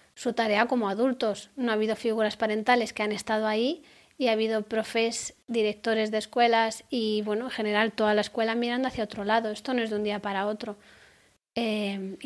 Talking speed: 195 wpm